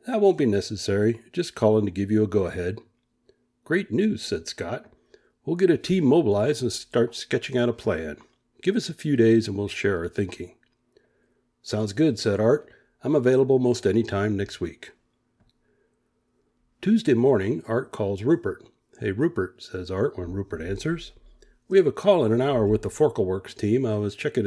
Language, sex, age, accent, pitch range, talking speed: English, male, 60-79, American, 100-125 Hz, 180 wpm